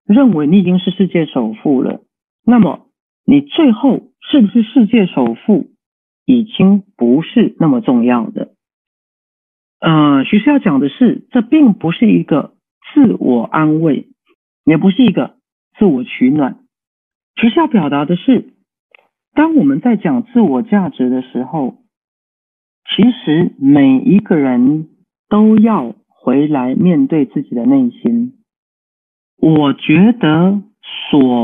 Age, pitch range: 50-69, 170-260 Hz